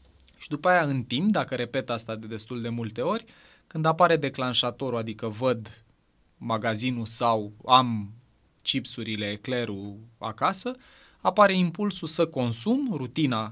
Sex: male